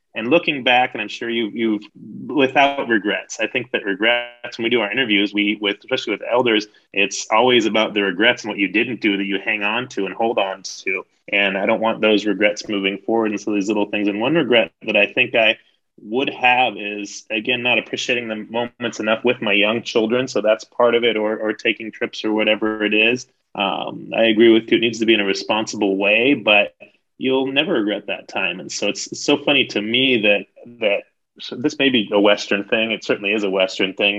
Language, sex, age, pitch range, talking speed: English, male, 30-49, 105-120 Hz, 225 wpm